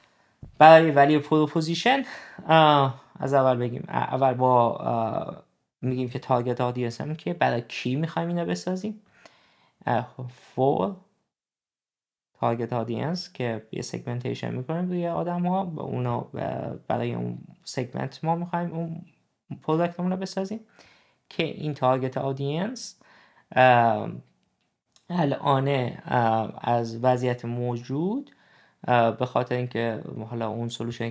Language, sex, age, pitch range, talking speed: Persian, male, 20-39, 115-160 Hz, 110 wpm